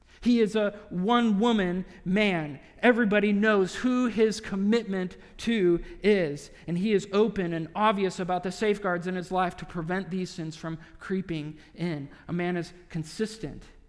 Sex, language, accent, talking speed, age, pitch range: male, English, American, 150 wpm, 40-59, 170-220 Hz